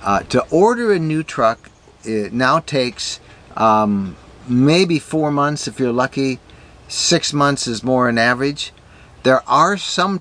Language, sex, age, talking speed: English, male, 50-69, 145 wpm